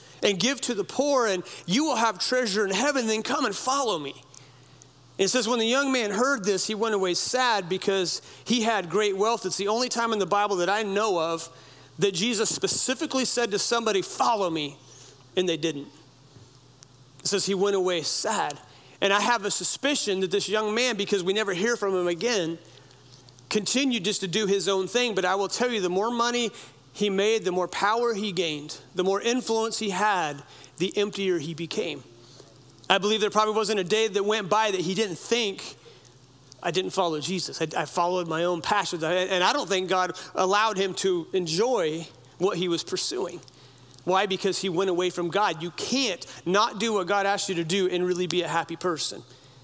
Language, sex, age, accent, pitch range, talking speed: English, male, 40-59, American, 165-215 Hz, 205 wpm